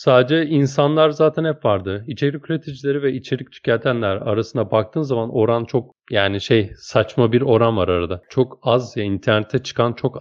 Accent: native